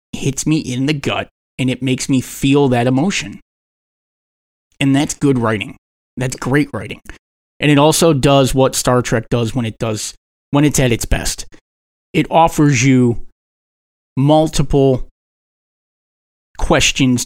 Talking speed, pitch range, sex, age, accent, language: 140 wpm, 115-140 Hz, male, 30-49, American, English